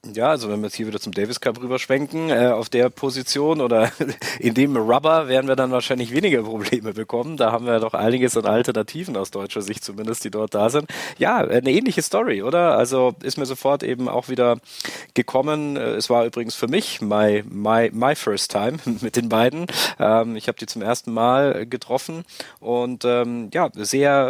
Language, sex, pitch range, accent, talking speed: German, male, 115-140 Hz, German, 195 wpm